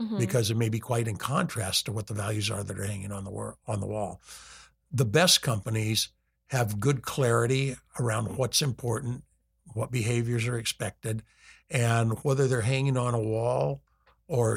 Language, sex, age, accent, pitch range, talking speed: English, male, 60-79, American, 110-130 Hz, 160 wpm